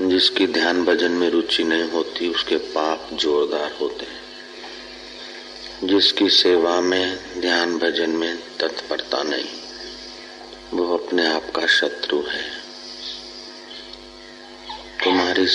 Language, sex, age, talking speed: Hindi, male, 40-59, 105 wpm